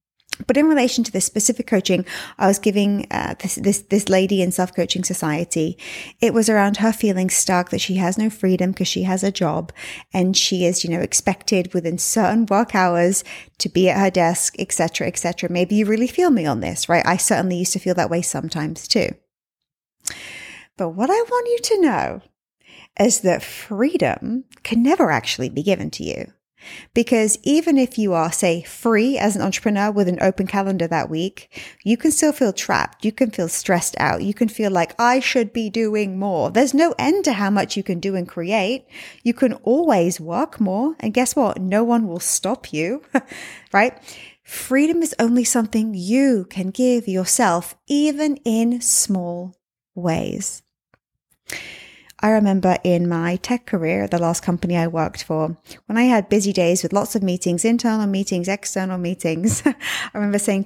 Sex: female